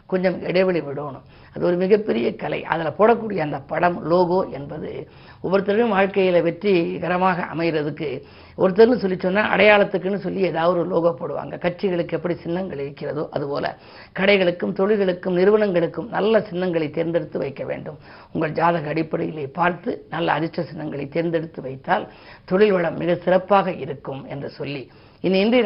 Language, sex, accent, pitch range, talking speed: Tamil, female, native, 165-200 Hz, 130 wpm